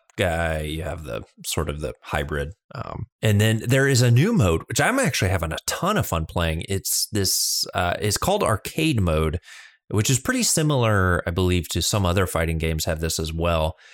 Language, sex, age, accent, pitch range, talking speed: English, male, 20-39, American, 85-125 Hz, 200 wpm